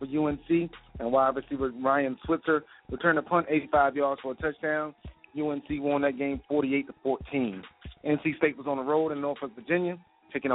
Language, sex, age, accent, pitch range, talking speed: English, male, 40-59, American, 135-155 Hz, 175 wpm